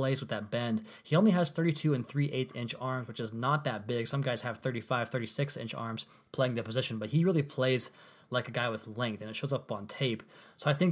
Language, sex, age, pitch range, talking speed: English, male, 20-39, 120-140 Hz, 255 wpm